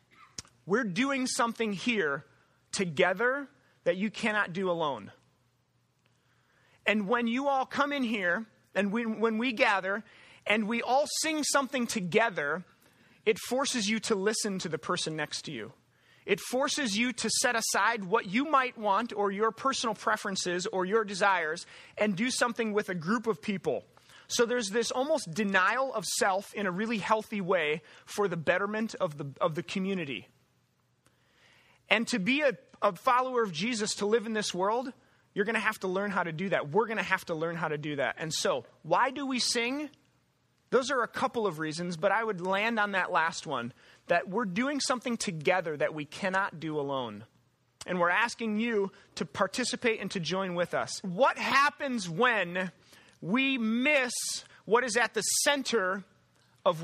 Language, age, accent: English, 30-49, American